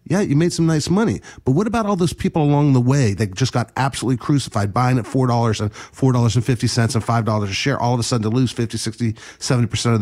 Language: English